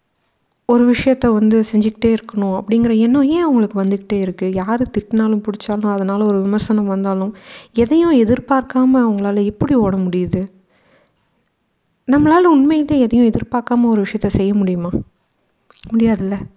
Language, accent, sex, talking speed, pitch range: Tamil, native, female, 120 wpm, 195-245 Hz